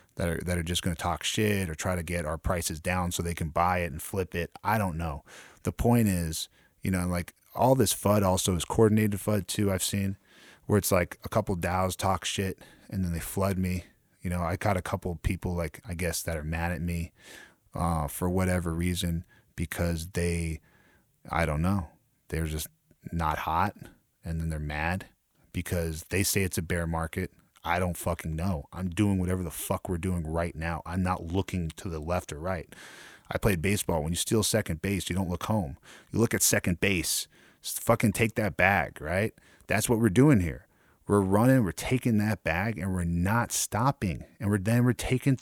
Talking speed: 210 wpm